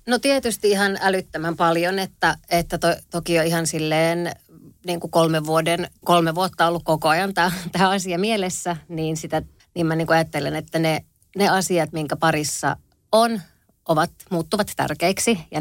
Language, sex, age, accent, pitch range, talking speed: Finnish, female, 30-49, native, 155-180 Hz, 130 wpm